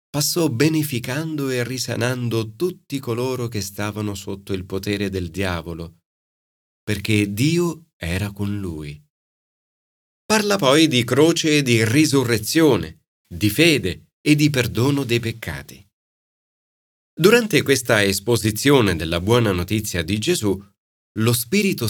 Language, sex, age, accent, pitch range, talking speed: Italian, male, 40-59, native, 95-140 Hz, 115 wpm